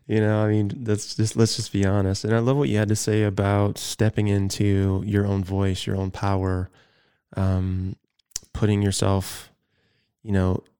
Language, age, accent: English, 20-39, American